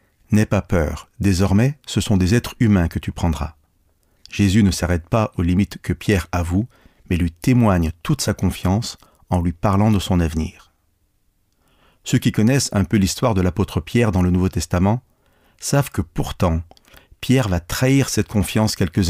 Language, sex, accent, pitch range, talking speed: French, male, French, 85-105 Hz, 175 wpm